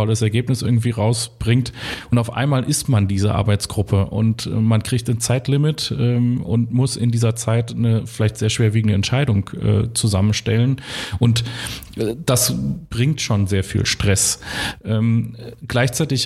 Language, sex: German, male